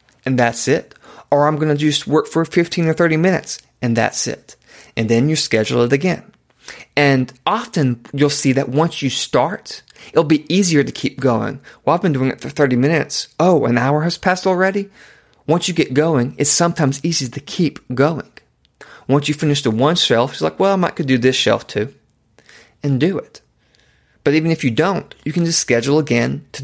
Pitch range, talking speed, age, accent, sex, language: 125-155 Hz, 205 wpm, 30-49, American, male, English